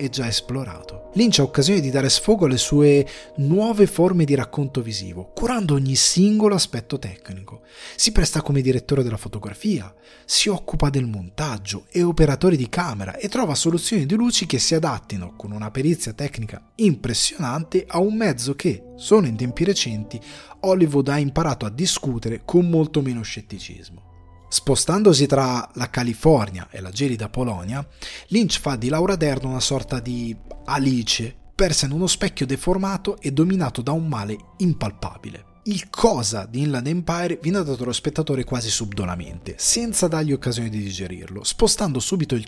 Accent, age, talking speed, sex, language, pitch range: native, 20-39, 155 wpm, male, Italian, 120-175 Hz